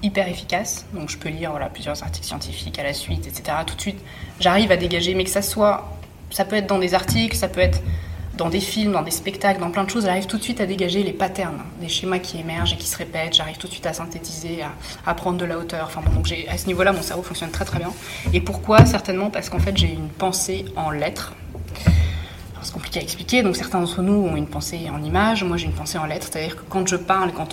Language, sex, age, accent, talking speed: French, female, 20-39, French, 265 wpm